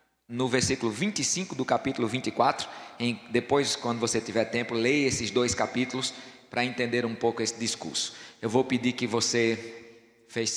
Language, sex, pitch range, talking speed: Portuguese, male, 105-130 Hz, 160 wpm